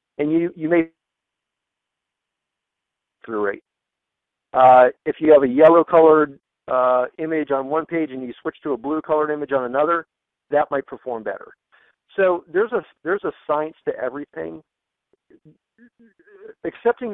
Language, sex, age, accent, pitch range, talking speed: English, male, 50-69, American, 130-165 Hz, 145 wpm